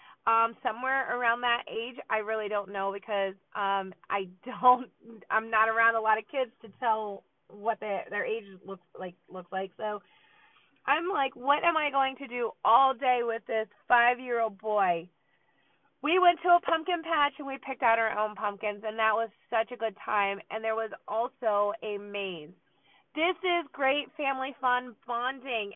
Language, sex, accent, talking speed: English, female, American, 180 wpm